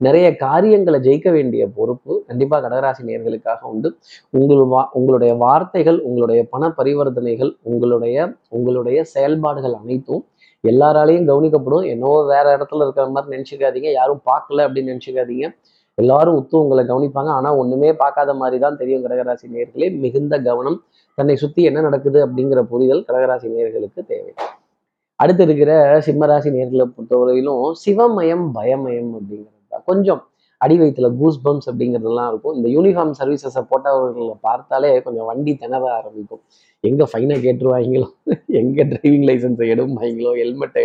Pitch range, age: 125-150 Hz, 20-39